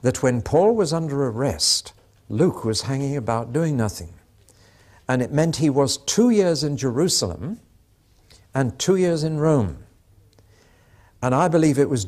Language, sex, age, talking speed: English, male, 60-79, 155 wpm